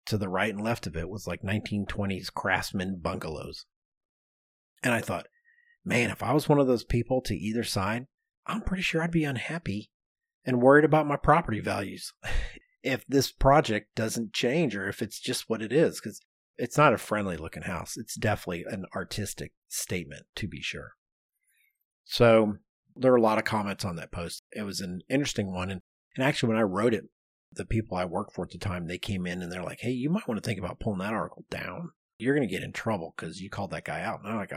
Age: 30-49